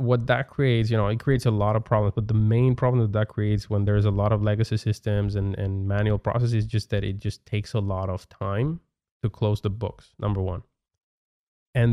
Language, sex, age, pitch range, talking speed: English, male, 20-39, 105-120 Hz, 230 wpm